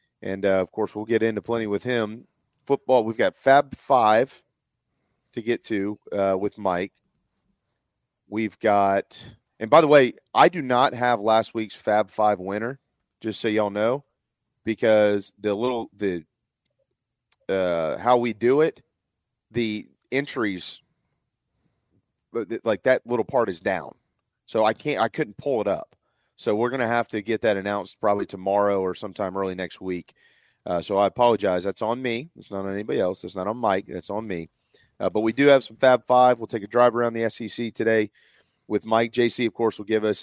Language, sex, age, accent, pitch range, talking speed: English, male, 30-49, American, 100-120 Hz, 190 wpm